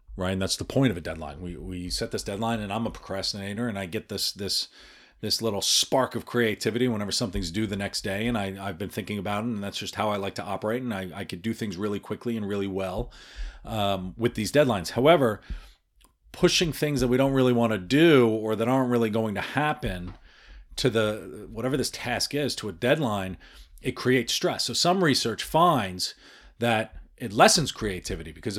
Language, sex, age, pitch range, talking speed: English, male, 40-59, 90-115 Hz, 210 wpm